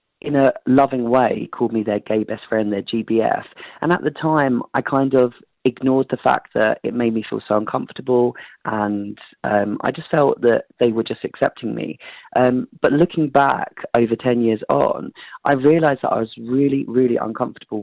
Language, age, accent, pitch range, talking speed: English, 30-49, British, 115-140 Hz, 190 wpm